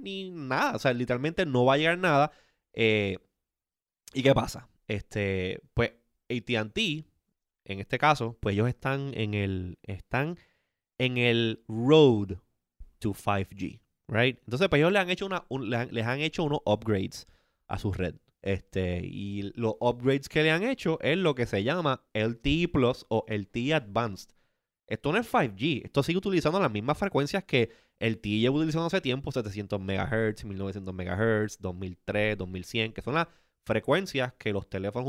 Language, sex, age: Spanish, male, 20-39